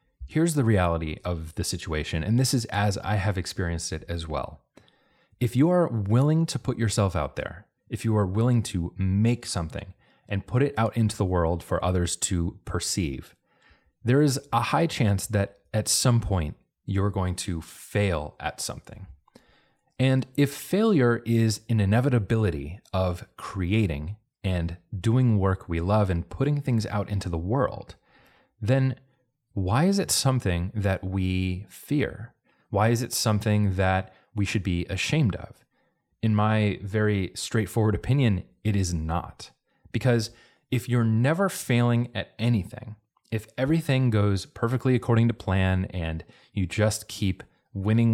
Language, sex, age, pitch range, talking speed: English, male, 30-49, 95-120 Hz, 155 wpm